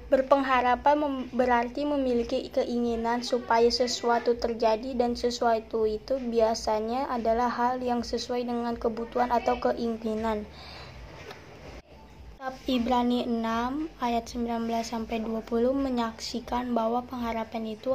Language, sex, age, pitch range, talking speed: Indonesian, female, 20-39, 225-255 Hz, 90 wpm